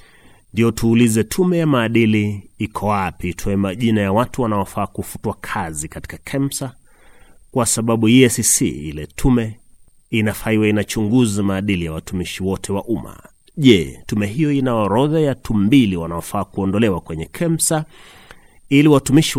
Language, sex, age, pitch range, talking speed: Swahili, male, 30-49, 95-120 Hz, 125 wpm